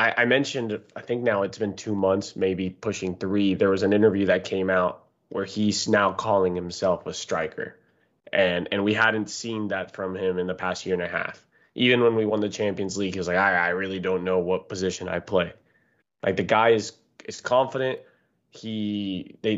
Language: English